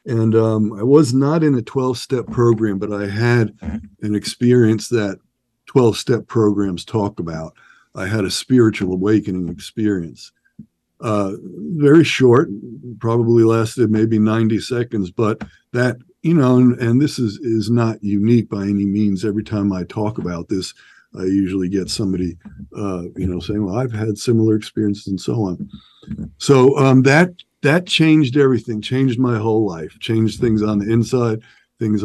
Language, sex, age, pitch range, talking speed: English, male, 50-69, 105-125 Hz, 165 wpm